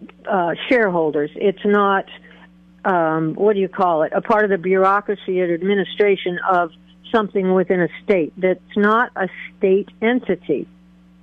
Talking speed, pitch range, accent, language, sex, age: 145 wpm, 180-220 Hz, American, English, female, 60-79